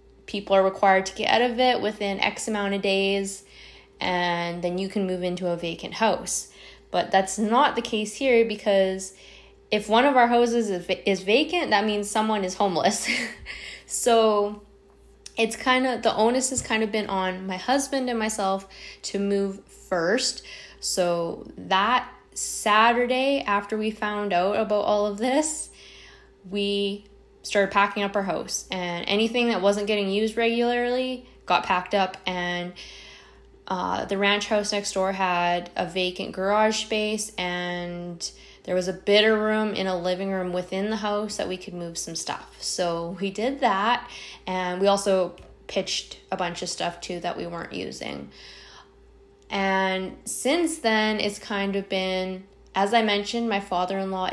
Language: English